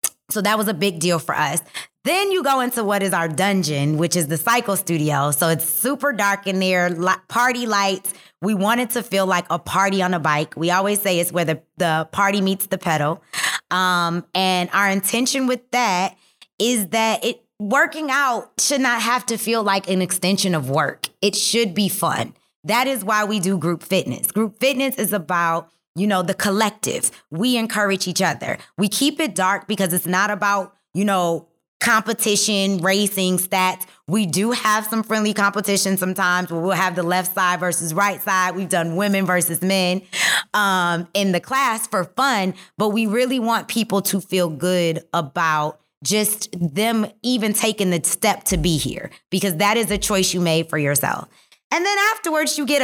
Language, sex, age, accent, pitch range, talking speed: English, female, 20-39, American, 180-220 Hz, 190 wpm